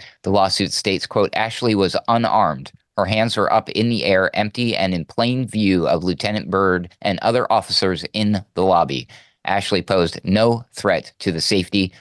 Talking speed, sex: 175 wpm, male